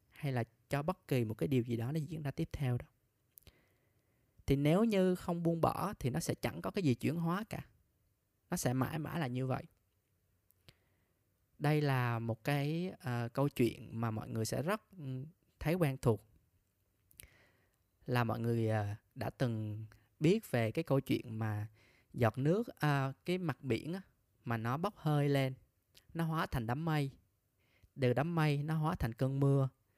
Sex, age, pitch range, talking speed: male, 20-39, 110-150 Hz, 180 wpm